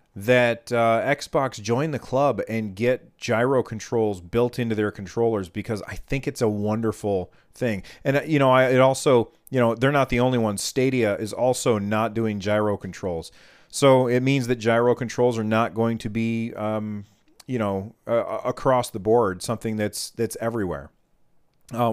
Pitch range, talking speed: 110-130 Hz, 175 wpm